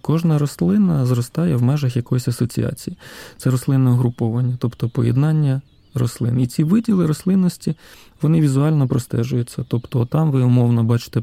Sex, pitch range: male, 120-145 Hz